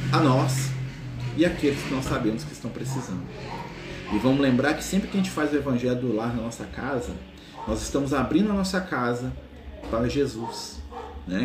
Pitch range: 115-145 Hz